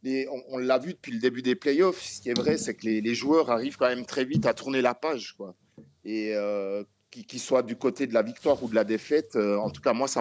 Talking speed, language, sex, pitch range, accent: 275 wpm, French, male, 110-135 Hz, French